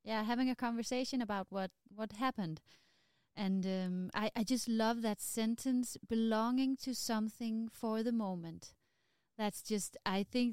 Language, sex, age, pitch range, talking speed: Danish, female, 30-49, 185-240 Hz, 150 wpm